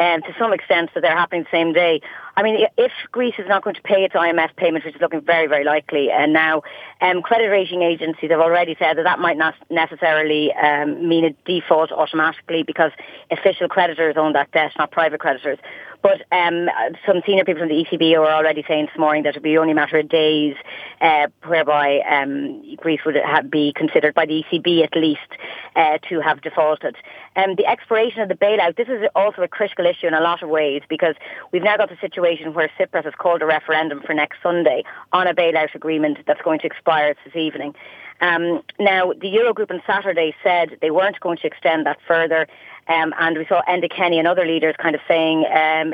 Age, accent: 30-49, Irish